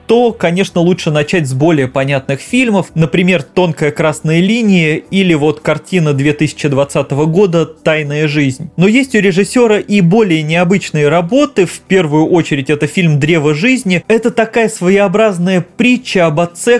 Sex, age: male, 20-39